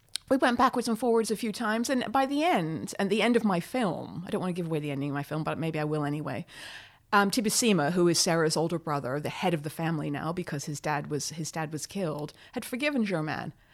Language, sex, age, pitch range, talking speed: English, female, 30-49, 155-200 Hz, 255 wpm